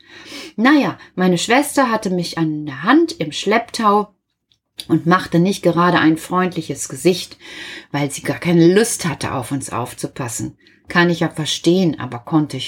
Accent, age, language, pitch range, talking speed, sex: German, 30-49, German, 175-270 Hz, 155 wpm, female